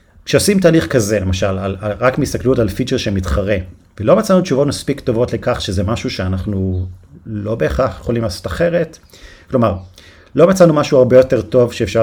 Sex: male